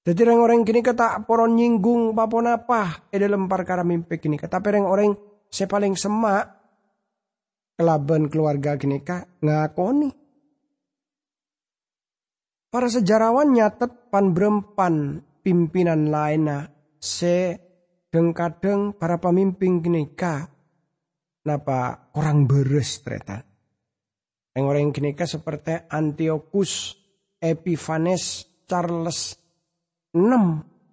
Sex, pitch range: male, 145-195 Hz